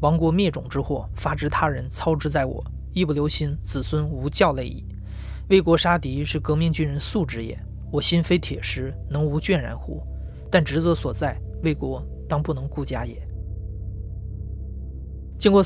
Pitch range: 110-165 Hz